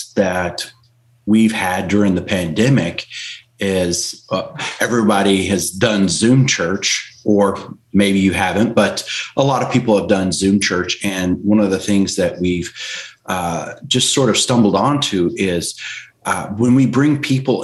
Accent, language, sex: American, English, male